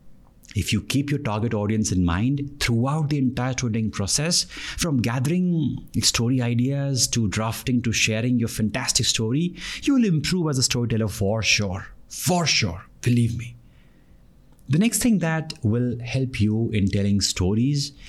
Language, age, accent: English, 50-69, Indian